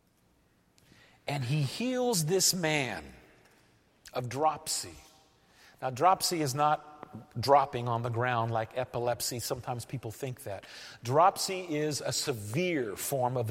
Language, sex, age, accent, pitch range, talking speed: English, male, 50-69, American, 140-200 Hz, 120 wpm